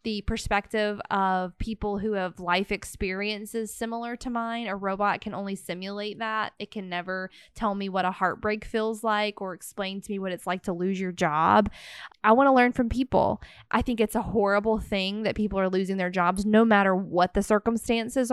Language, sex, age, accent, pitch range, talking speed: English, female, 20-39, American, 185-215 Hz, 200 wpm